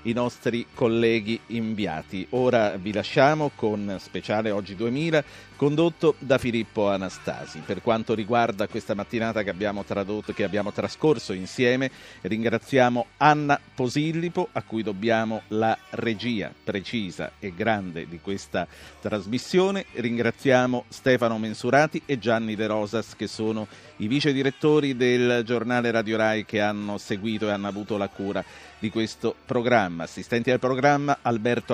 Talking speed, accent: 135 wpm, native